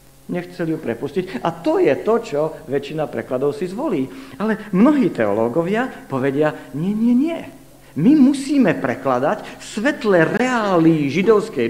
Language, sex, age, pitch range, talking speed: Slovak, male, 50-69, 135-210 Hz, 130 wpm